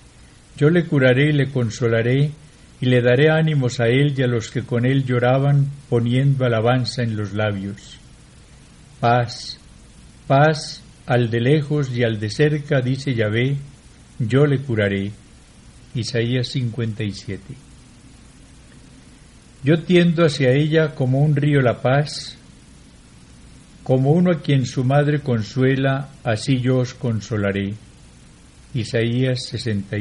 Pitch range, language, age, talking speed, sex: 105-140 Hz, Spanish, 60-79, 120 wpm, male